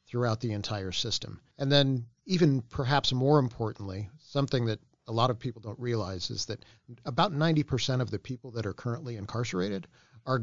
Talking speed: 175 wpm